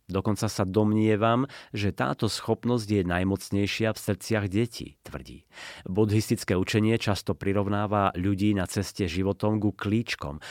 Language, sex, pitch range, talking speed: Slovak, male, 95-110 Hz, 125 wpm